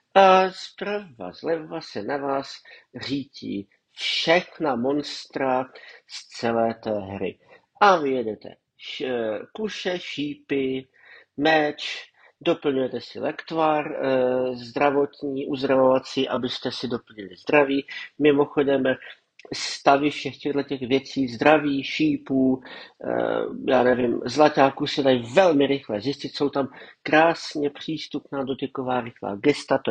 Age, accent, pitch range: 50-69, native, 125-155 Hz